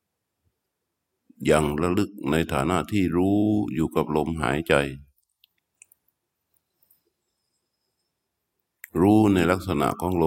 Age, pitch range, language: 60-79, 75-90 Hz, Thai